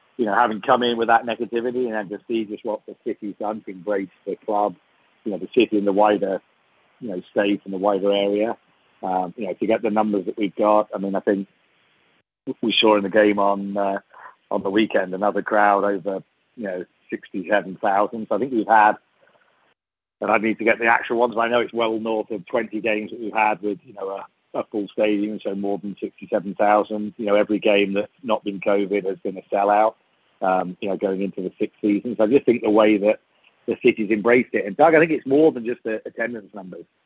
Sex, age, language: male, 40-59, English